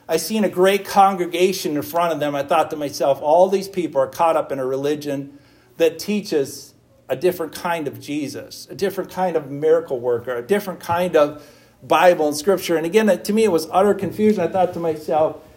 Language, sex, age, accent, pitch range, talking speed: English, male, 50-69, American, 140-190 Hz, 210 wpm